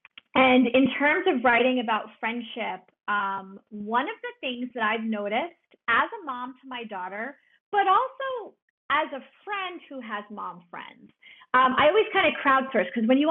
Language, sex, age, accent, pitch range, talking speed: English, female, 30-49, American, 220-280 Hz, 175 wpm